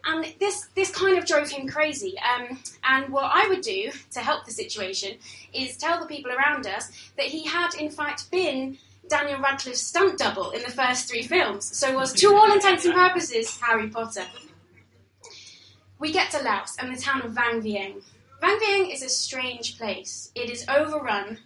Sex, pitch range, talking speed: female, 215-295 Hz, 190 wpm